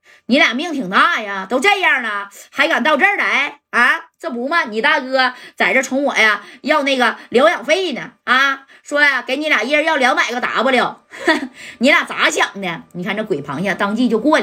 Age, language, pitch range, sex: 20-39, Chinese, 200-275 Hz, female